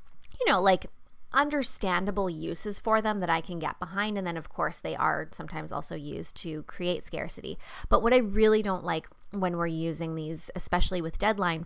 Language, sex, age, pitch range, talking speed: English, female, 20-39, 170-205 Hz, 190 wpm